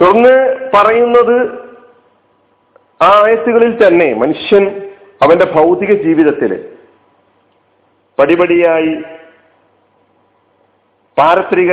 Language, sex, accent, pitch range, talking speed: Malayalam, male, native, 145-205 Hz, 50 wpm